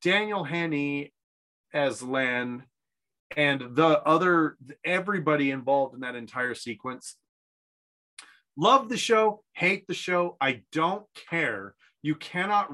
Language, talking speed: English, 115 wpm